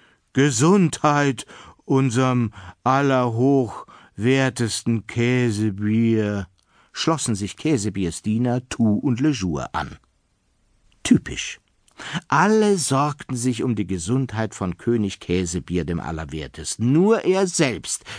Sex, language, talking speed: male, German, 90 wpm